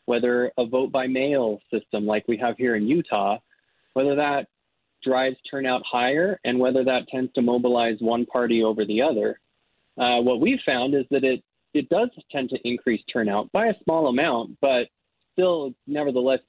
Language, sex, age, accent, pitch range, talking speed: English, male, 20-39, American, 120-140 Hz, 165 wpm